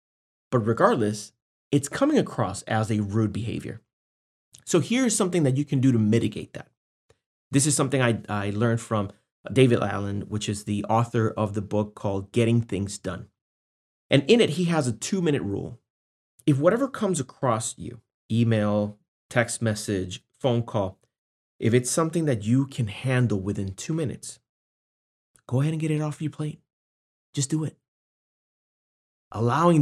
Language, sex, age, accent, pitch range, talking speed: English, male, 30-49, American, 105-145 Hz, 160 wpm